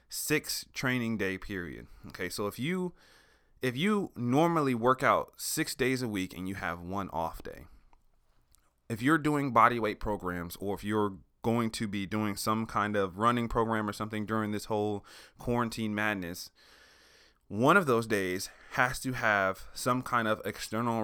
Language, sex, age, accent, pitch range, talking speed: English, male, 30-49, American, 100-130 Hz, 170 wpm